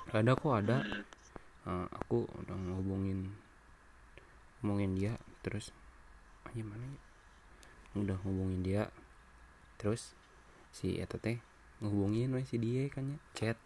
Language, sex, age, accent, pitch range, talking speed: Indonesian, male, 20-39, native, 90-115 Hz, 110 wpm